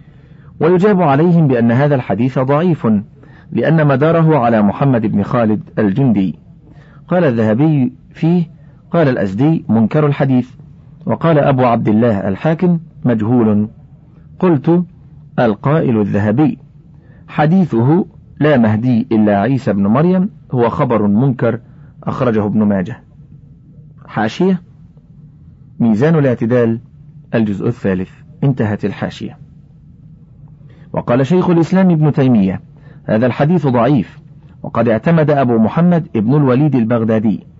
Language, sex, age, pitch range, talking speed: Arabic, male, 40-59, 115-155 Hz, 100 wpm